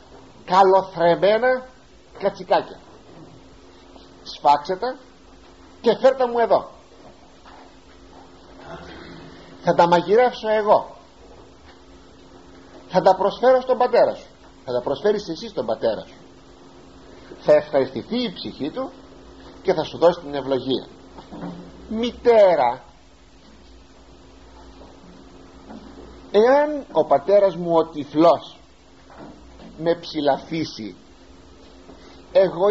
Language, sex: Greek, male